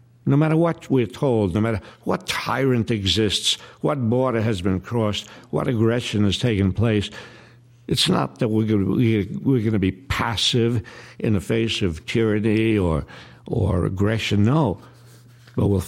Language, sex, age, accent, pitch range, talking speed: English, male, 60-79, American, 100-120 Hz, 145 wpm